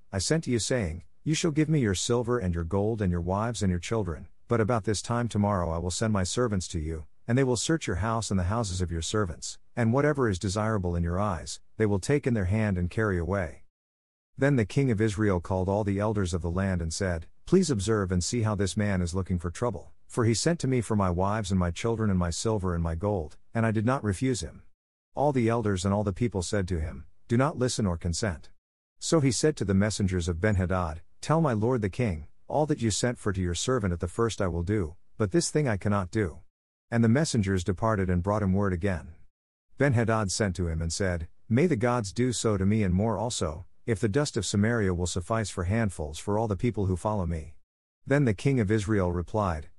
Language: English